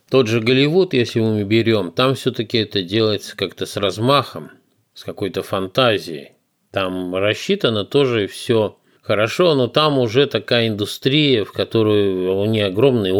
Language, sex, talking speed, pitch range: Russian, male, 140 wpm, 95-125 Hz